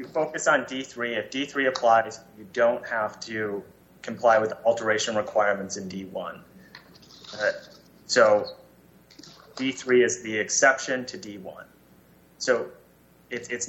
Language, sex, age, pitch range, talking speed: English, male, 30-49, 100-130 Hz, 120 wpm